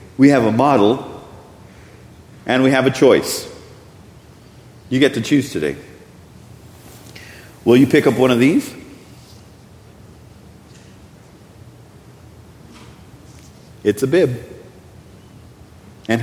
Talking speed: 90 wpm